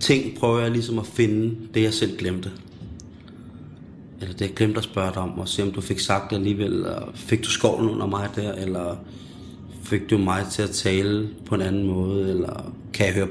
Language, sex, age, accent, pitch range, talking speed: Danish, male, 20-39, native, 95-120 Hz, 220 wpm